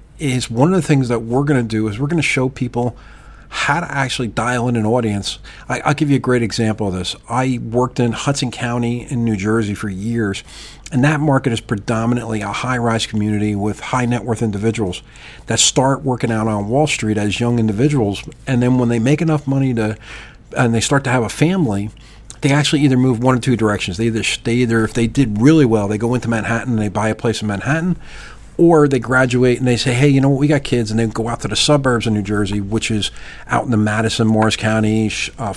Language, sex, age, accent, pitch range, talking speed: English, male, 40-59, American, 110-135 Hz, 235 wpm